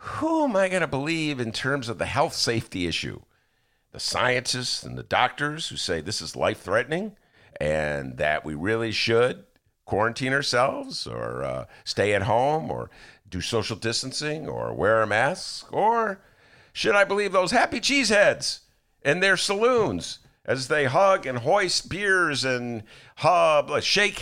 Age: 50-69